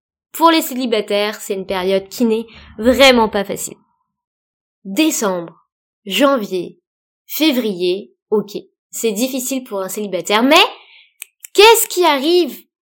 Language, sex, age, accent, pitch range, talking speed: French, female, 20-39, French, 205-260 Hz, 110 wpm